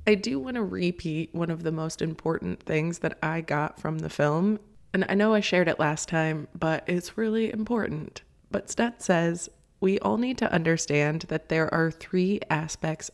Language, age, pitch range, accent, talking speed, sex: English, 20-39, 160-195 Hz, American, 190 wpm, female